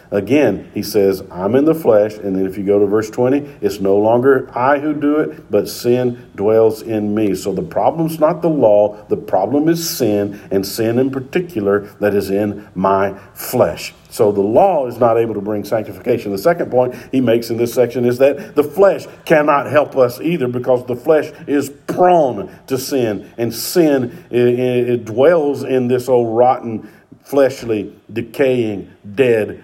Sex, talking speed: male, 180 wpm